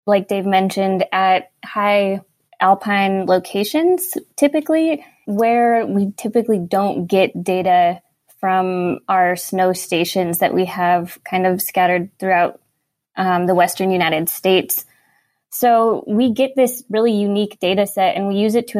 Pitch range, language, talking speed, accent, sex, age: 185-230 Hz, English, 135 wpm, American, female, 20-39